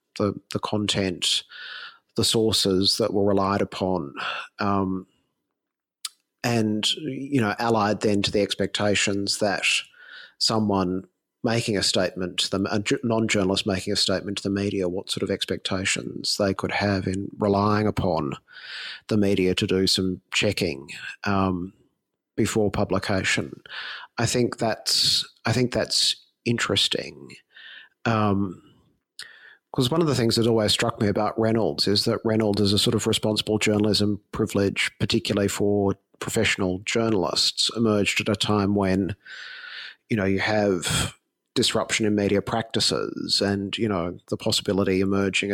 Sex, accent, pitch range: male, Australian, 95-110 Hz